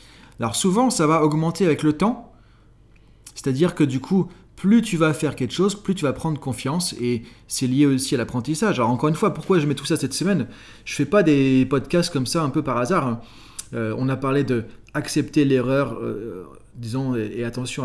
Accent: French